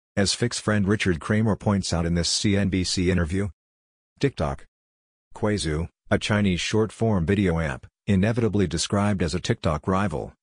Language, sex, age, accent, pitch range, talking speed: English, male, 50-69, American, 85-105 Hz, 140 wpm